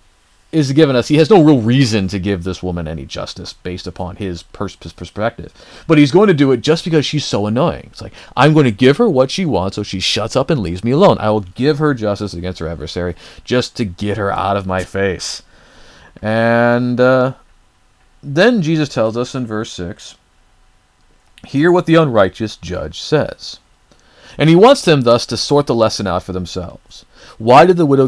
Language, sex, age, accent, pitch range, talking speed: English, male, 40-59, American, 95-140 Hz, 200 wpm